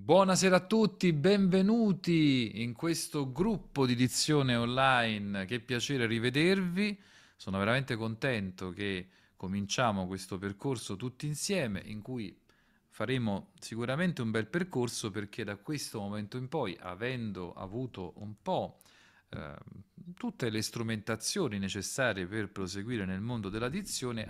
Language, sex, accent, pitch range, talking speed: Italian, male, native, 95-130 Hz, 125 wpm